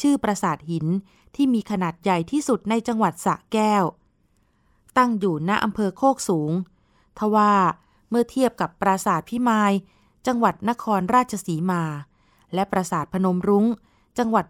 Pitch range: 180-225 Hz